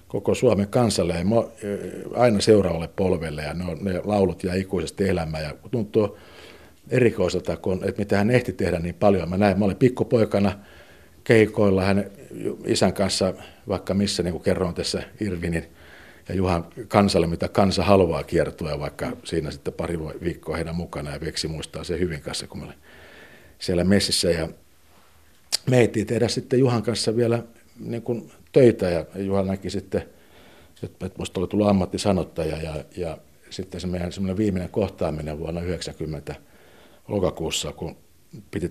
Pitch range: 85-100 Hz